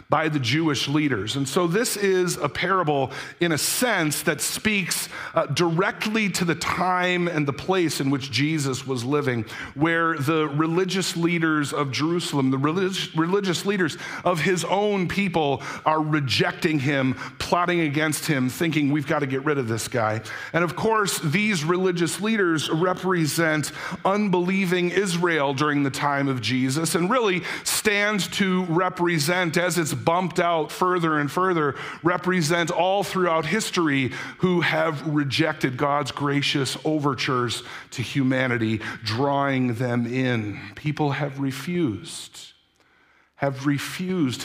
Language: English